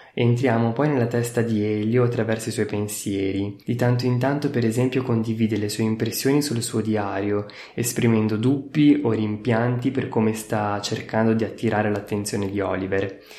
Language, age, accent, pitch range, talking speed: Italian, 20-39, native, 110-125 Hz, 160 wpm